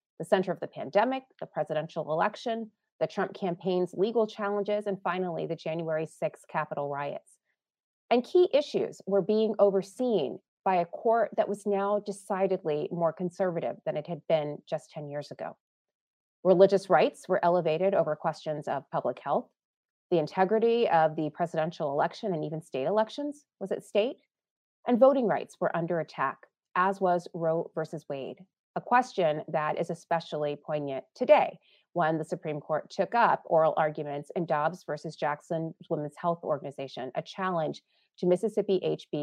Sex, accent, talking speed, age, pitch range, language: female, American, 160 wpm, 30-49, 160-205 Hz, English